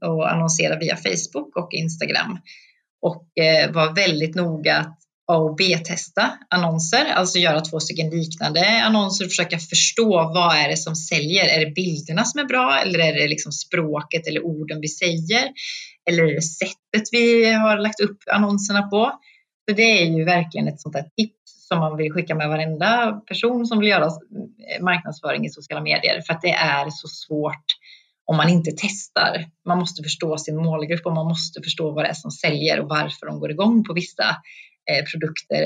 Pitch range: 160-205 Hz